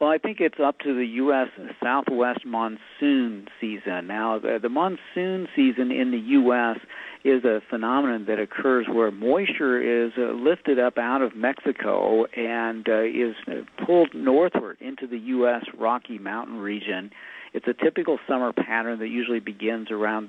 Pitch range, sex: 110-130 Hz, male